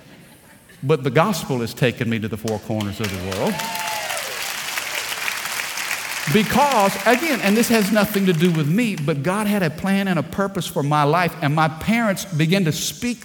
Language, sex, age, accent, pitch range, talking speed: English, male, 50-69, American, 155-215 Hz, 180 wpm